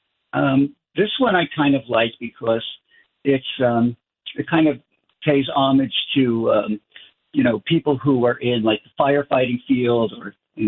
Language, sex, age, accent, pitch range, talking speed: English, male, 50-69, American, 115-140 Hz, 165 wpm